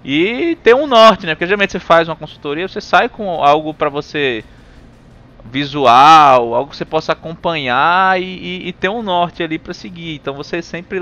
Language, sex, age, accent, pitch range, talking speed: Portuguese, male, 20-39, Brazilian, 120-175 Hz, 190 wpm